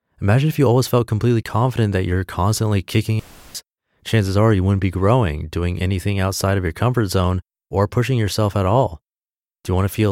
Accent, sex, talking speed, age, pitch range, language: American, male, 210 wpm, 30-49, 90-115 Hz, English